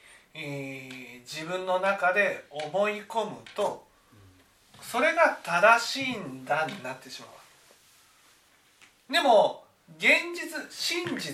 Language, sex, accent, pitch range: Japanese, male, native, 135-225 Hz